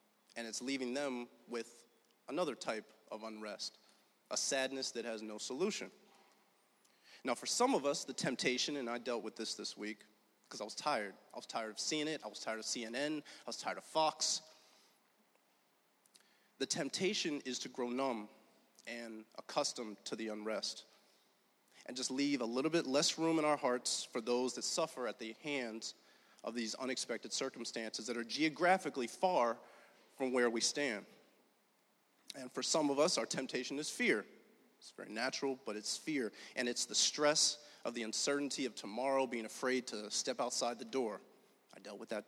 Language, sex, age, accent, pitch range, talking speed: English, male, 30-49, American, 115-145 Hz, 175 wpm